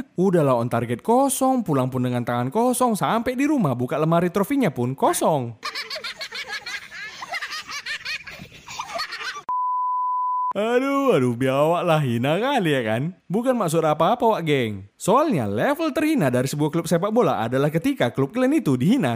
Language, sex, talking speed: Indonesian, male, 140 wpm